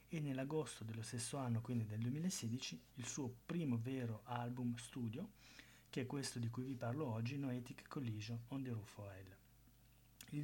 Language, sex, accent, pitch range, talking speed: Italian, male, native, 115-130 Hz, 165 wpm